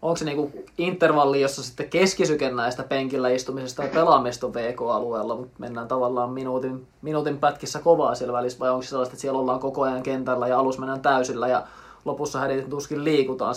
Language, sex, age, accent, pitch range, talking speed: Finnish, male, 20-39, native, 140-160 Hz, 170 wpm